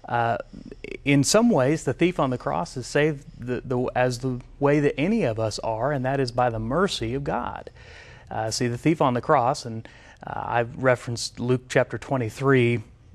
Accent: American